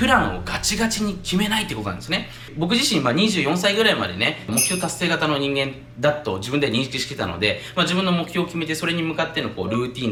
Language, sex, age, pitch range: Japanese, male, 20-39, 105-165 Hz